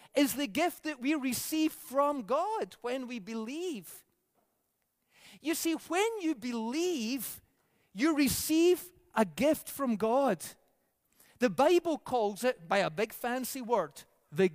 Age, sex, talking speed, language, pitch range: 30-49, male, 130 wpm, English, 250-325 Hz